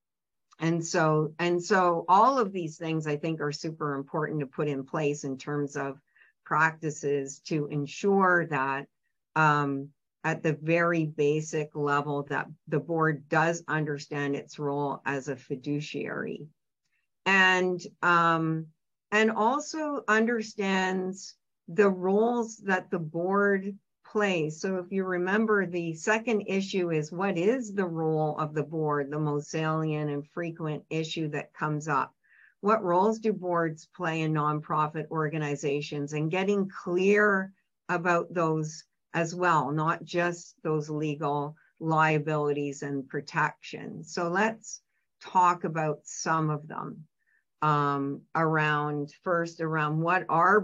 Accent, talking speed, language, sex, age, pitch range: American, 130 wpm, English, female, 50-69, 150-185 Hz